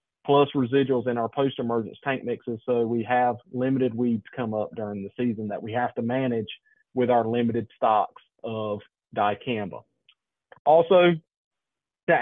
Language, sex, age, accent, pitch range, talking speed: English, male, 30-49, American, 120-145 Hz, 145 wpm